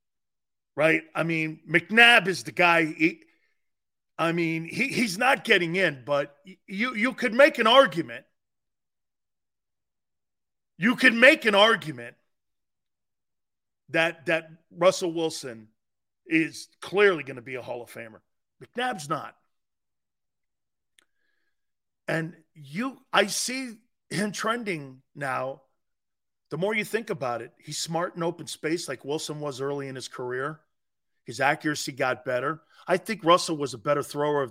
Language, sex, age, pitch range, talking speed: English, male, 40-59, 145-195 Hz, 135 wpm